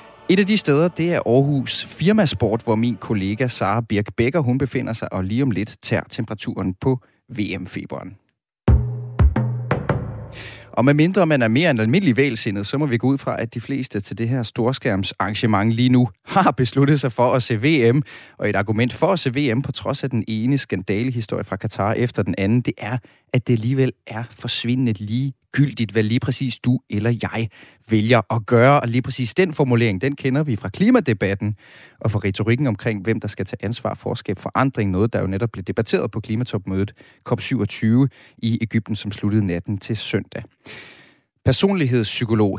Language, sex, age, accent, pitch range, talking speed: Danish, male, 30-49, native, 105-130 Hz, 180 wpm